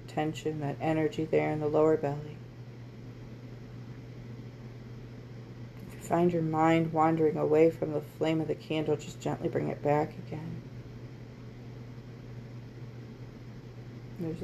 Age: 30-49